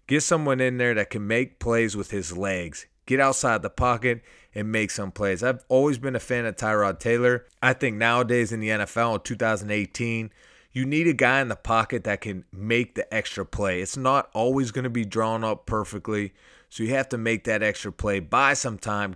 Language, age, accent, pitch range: English, 30-49, American, 105-135 Hz